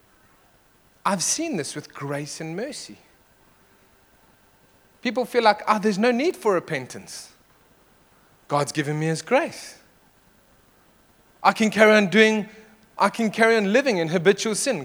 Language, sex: English, male